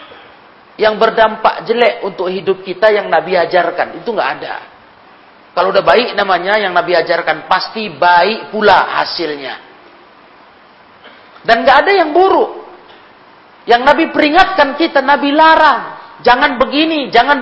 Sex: male